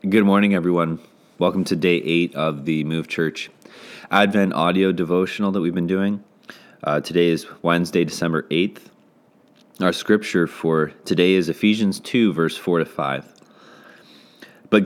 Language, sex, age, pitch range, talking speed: English, male, 20-39, 85-105 Hz, 145 wpm